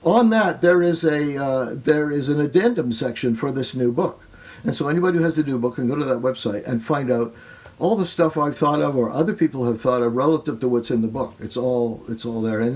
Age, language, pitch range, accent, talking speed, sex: 60-79, English, 120-160 Hz, American, 260 wpm, male